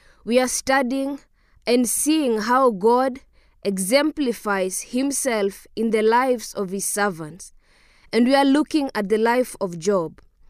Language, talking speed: English, 135 wpm